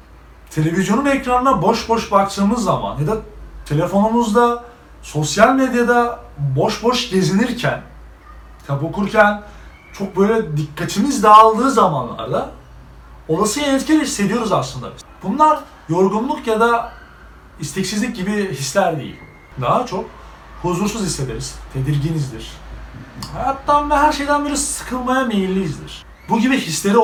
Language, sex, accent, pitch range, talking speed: Turkish, male, native, 165-235 Hz, 105 wpm